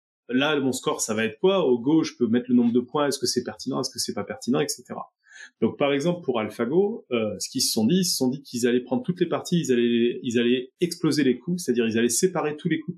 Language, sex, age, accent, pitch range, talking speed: French, male, 20-39, French, 120-165 Hz, 280 wpm